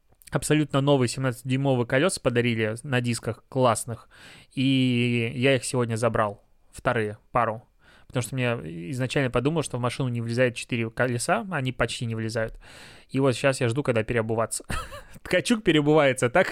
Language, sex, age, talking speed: Russian, male, 20-39, 150 wpm